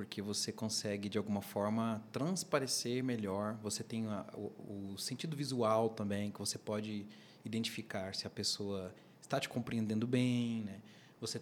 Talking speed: 150 wpm